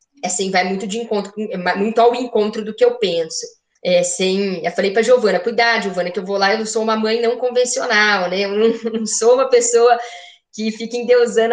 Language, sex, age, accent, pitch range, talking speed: Portuguese, female, 10-29, Brazilian, 205-245 Hz, 220 wpm